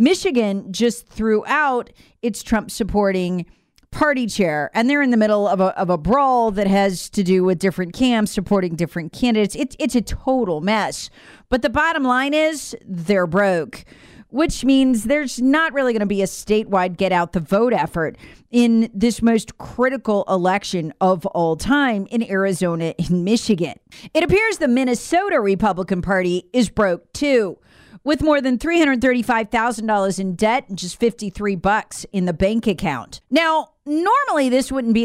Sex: female